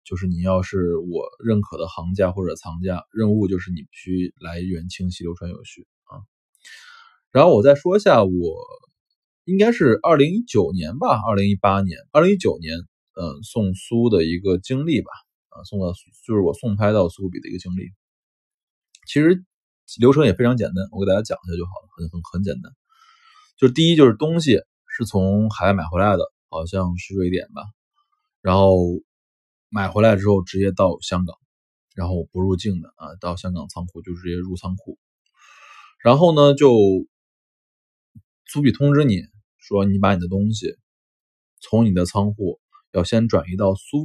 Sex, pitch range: male, 90-140 Hz